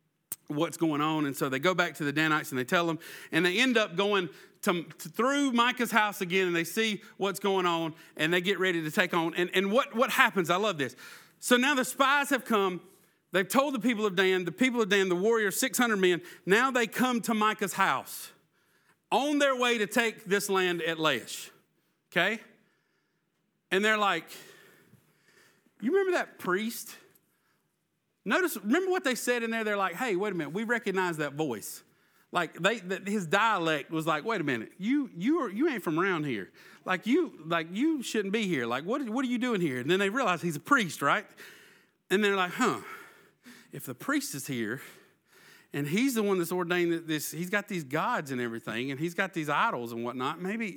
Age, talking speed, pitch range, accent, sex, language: 40-59, 210 wpm, 165-230 Hz, American, male, English